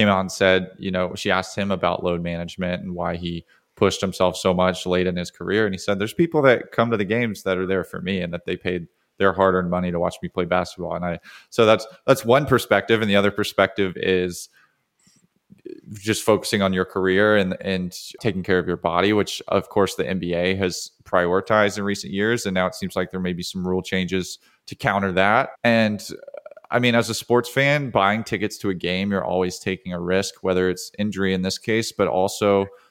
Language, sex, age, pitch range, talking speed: English, male, 20-39, 90-110 Hz, 225 wpm